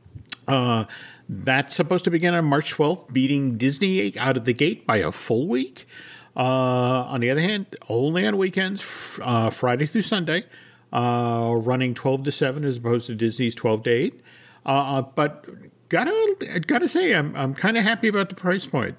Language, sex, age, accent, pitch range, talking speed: English, male, 50-69, American, 125-160 Hz, 175 wpm